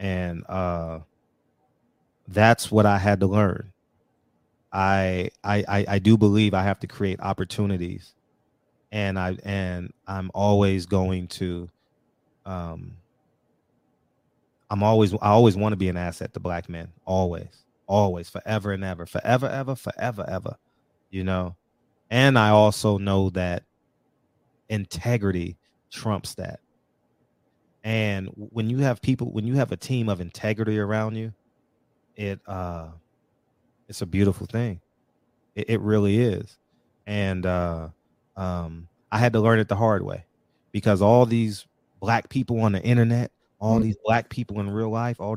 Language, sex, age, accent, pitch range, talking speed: English, male, 30-49, American, 95-115 Hz, 145 wpm